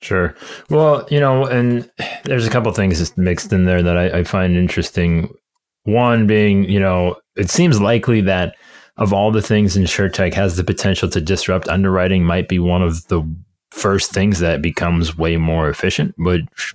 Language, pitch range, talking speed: English, 85-105 Hz, 185 wpm